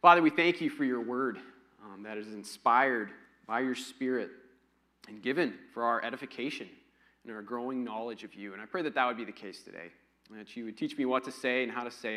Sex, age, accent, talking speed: male, 30-49, American, 235 wpm